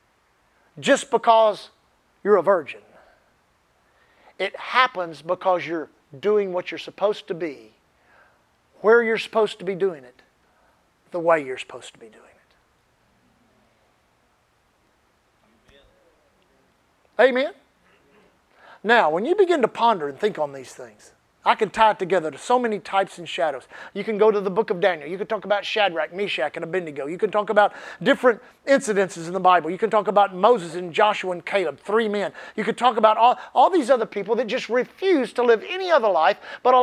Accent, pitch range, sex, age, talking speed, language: American, 180-240 Hz, male, 50-69, 175 wpm, English